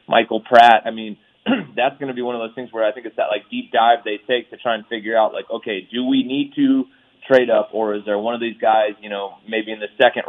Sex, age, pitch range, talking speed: male, 20-39, 105-120 Hz, 280 wpm